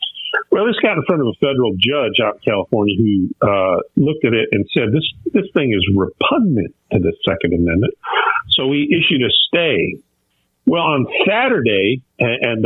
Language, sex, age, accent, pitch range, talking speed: English, male, 50-69, American, 100-145 Hz, 175 wpm